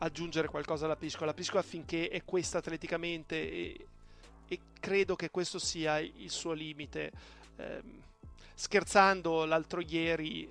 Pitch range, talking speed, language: 165-200 Hz, 130 wpm, Italian